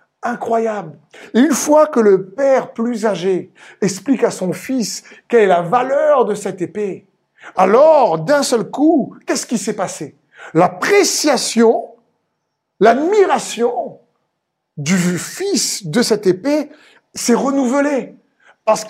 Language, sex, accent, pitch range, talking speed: French, male, French, 195-260 Hz, 120 wpm